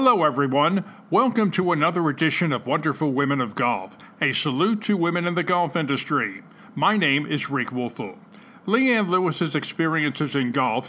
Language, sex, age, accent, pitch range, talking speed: English, male, 50-69, American, 140-180 Hz, 160 wpm